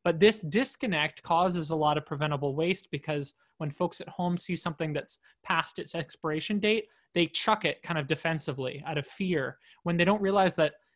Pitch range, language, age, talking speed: 150-185 Hz, English, 20-39, 190 wpm